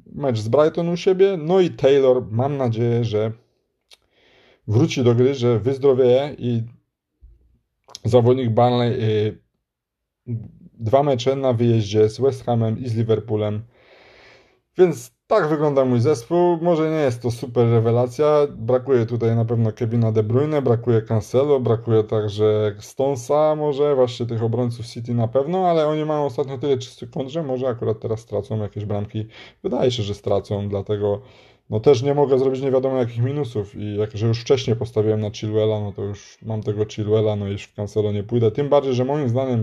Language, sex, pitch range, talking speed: Polish, male, 110-130 Hz, 170 wpm